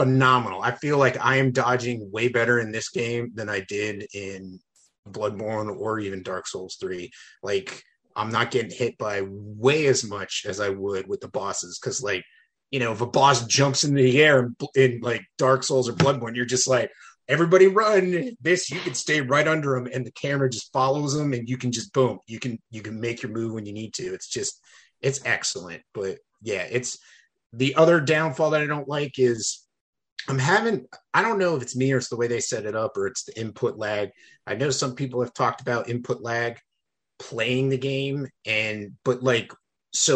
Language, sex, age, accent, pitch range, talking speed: English, male, 30-49, American, 115-140 Hz, 210 wpm